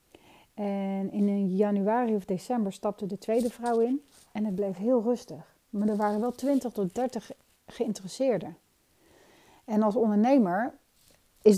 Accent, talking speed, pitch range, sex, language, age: Dutch, 140 wpm, 200-250 Hz, female, Dutch, 40-59